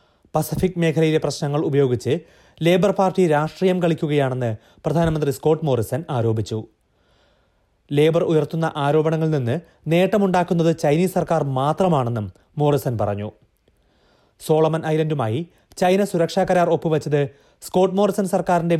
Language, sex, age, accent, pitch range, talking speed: Malayalam, male, 30-49, native, 125-175 Hz, 100 wpm